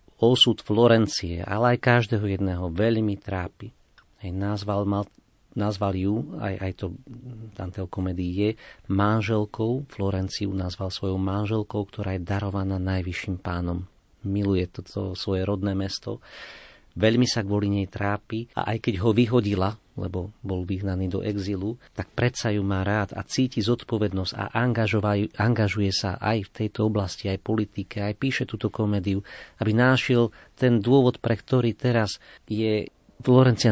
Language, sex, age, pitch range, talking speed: Slovak, male, 40-59, 95-115 Hz, 140 wpm